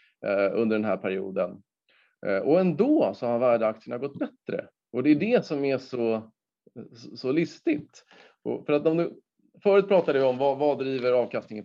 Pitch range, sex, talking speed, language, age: 115-160 Hz, male, 155 wpm, Swedish, 30-49